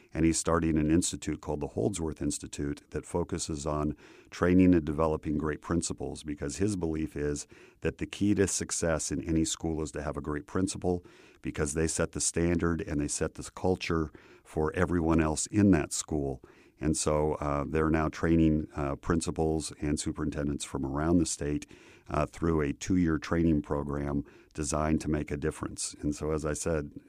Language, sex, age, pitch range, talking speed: English, male, 50-69, 75-90 Hz, 180 wpm